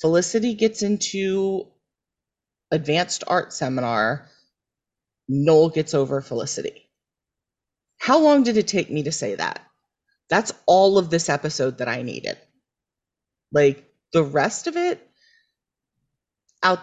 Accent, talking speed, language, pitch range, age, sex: American, 120 wpm, English, 145-220 Hz, 30-49, female